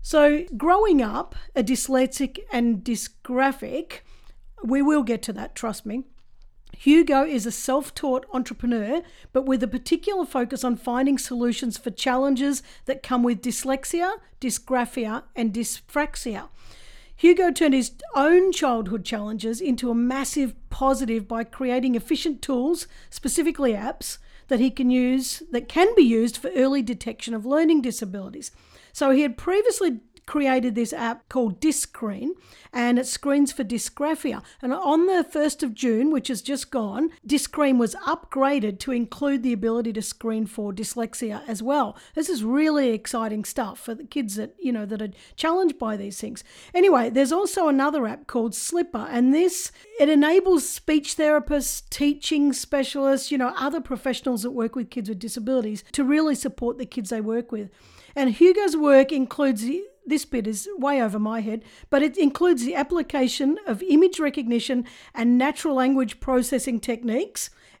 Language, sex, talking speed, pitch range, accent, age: English, female, 155 wpm, 235-295 Hz, Australian, 50-69